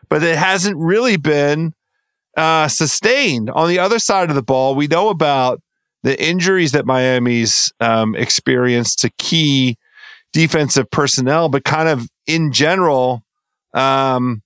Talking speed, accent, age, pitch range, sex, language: 135 wpm, American, 40-59, 130-170 Hz, male, English